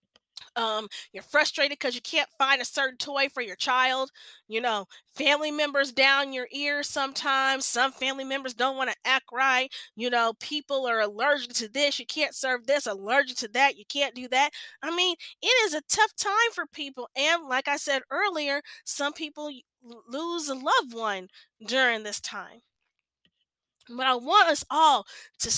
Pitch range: 255-335 Hz